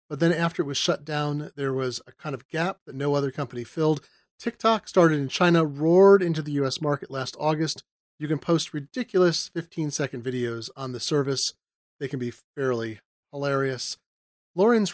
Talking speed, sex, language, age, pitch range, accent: 175 wpm, male, English, 40-59, 140-180 Hz, American